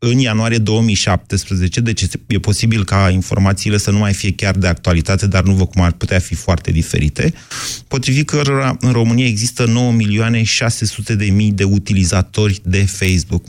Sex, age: male, 30-49